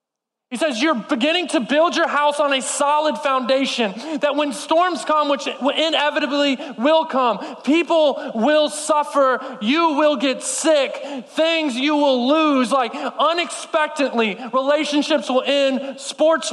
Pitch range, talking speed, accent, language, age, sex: 235-305 Hz, 135 wpm, American, English, 20-39, male